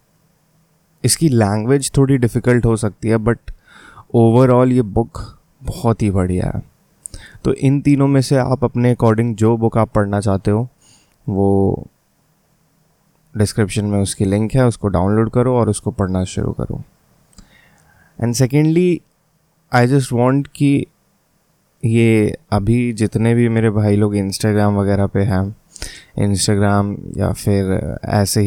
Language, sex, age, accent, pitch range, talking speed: Hindi, male, 20-39, native, 105-130 Hz, 135 wpm